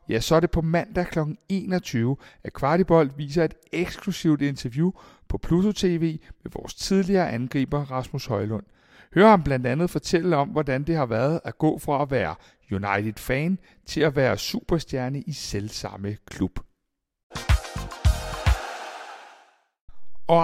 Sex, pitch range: male, 125-175 Hz